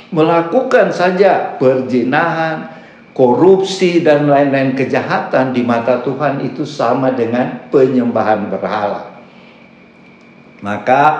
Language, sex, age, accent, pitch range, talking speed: Indonesian, male, 50-69, native, 105-130 Hz, 85 wpm